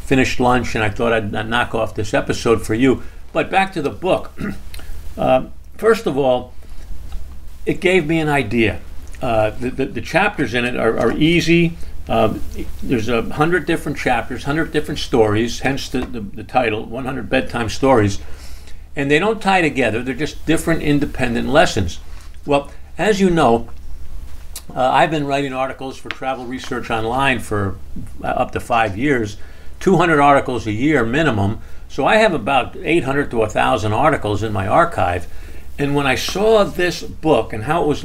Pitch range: 95-150 Hz